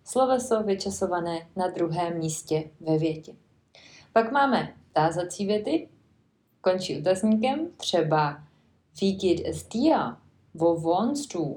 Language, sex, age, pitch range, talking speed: Czech, female, 30-49, 165-215 Hz, 95 wpm